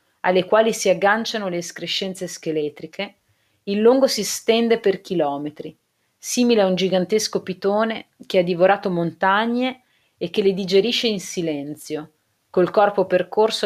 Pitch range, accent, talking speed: 165-215 Hz, native, 135 wpm